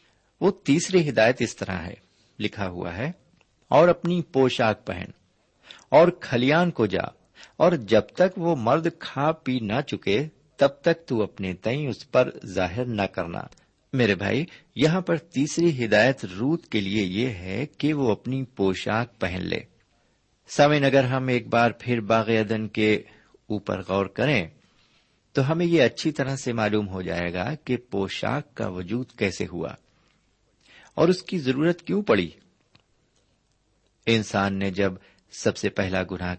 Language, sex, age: Urdu, male, 50-69